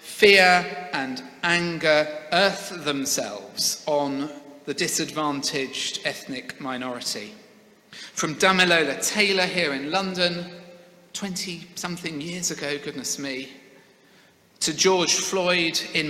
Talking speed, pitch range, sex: 95 wpm, 145-185 Hz, male